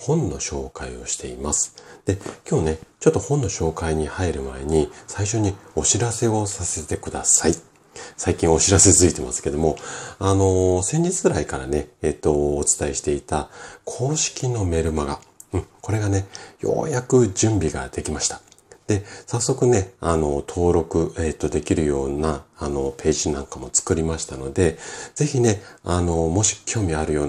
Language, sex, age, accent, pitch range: Japanese, male, 40-59, native, 75-105 Hz